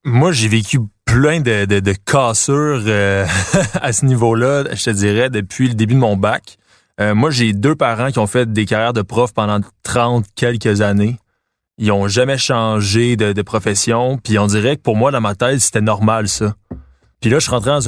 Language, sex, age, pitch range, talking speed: French, male, 20-39, 105-130 Hz, 210 wpm